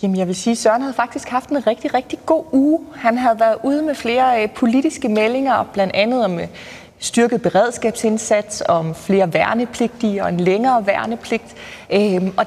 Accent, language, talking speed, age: native, Danish, 165 wpm, 30-49